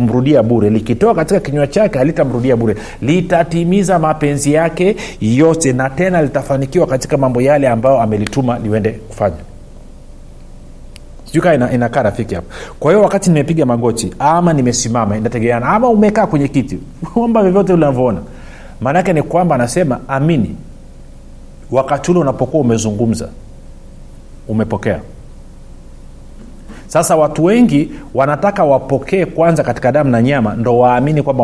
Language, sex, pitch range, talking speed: Swahili, male, 105-165 Hz, 115 wpm